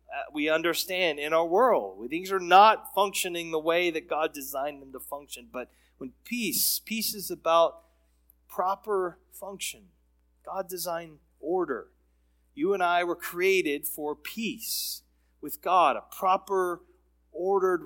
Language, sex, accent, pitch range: English, male, American, 155-205 Hz